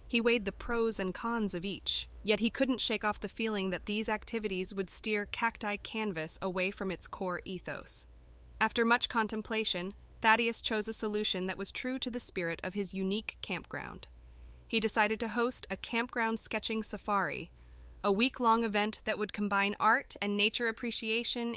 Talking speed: 175 wpm